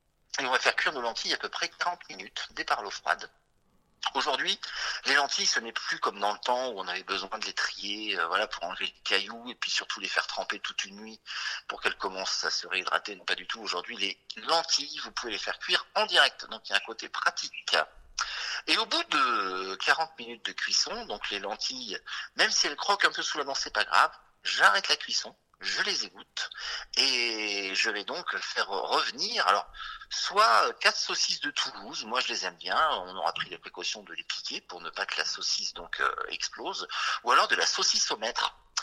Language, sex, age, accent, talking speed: French, male, 50-69, French, 225 wpm